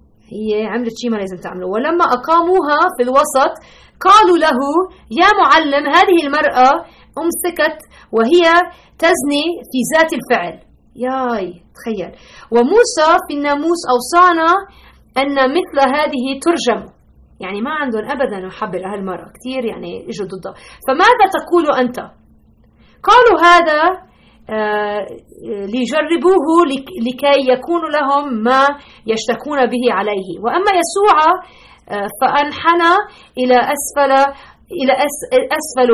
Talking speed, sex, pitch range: 105 wpm, female, 235-335 Hz